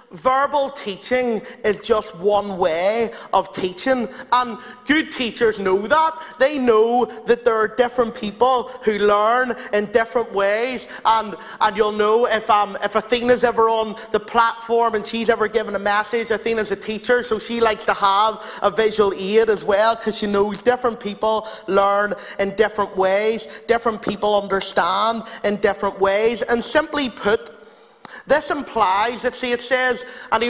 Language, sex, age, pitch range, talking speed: English, male, 30-49, 210-255 Hz, 160 wpm